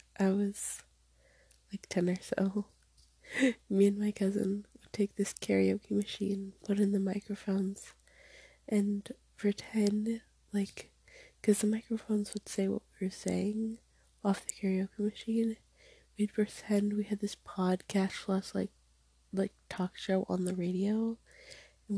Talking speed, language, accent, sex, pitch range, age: 135 wpm, English, American, female, 190-225 Hz, 20-39